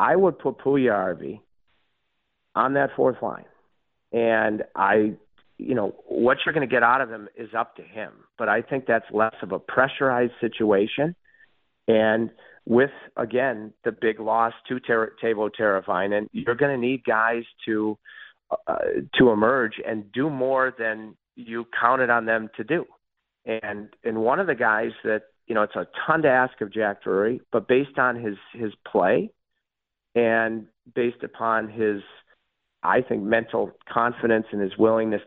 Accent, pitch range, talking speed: American, 105-120 Hz, 165 wpm